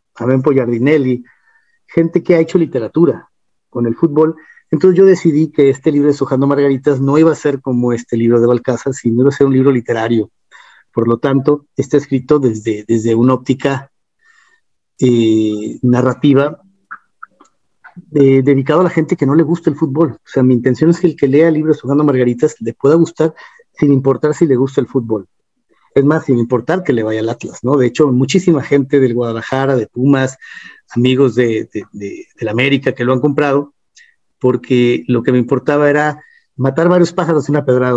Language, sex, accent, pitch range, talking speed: Spanish, male, Mexican, 125-155 Hz, 190 wpm